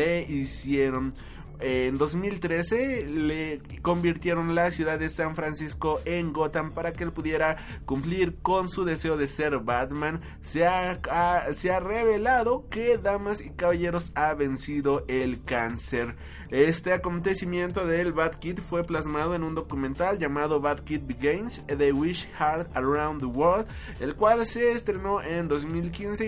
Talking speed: 145 wpm